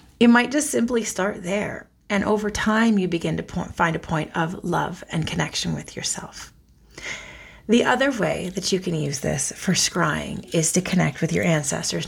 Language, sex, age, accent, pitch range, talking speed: English, female, 30-49, American, 165-205 Hz, 185 wpm